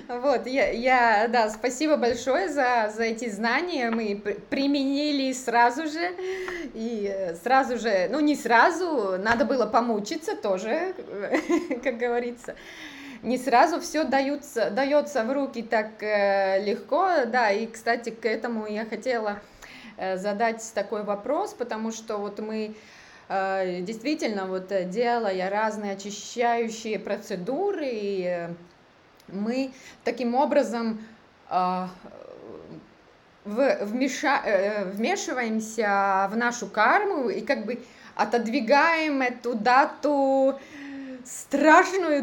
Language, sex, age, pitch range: Russian, female, 20-39, 210-280 Hz